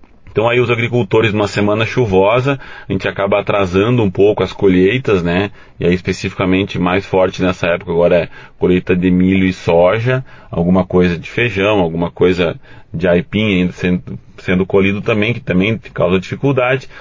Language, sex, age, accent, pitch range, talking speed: Portuguese, male, 30-49, Brazilian, 95-115 Hz, 165 wpm